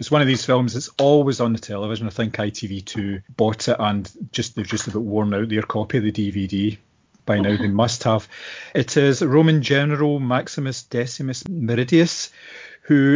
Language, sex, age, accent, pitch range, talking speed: English, male, 40-59, British, 105-130 Hz, 185 wpm